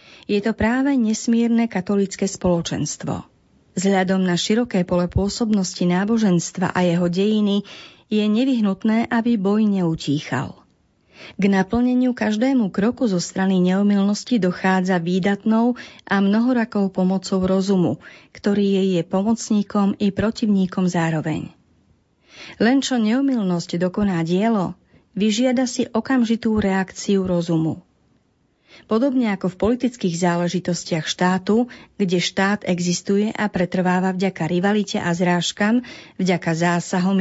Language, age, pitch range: Slovak, 30-49, 180-225 Hz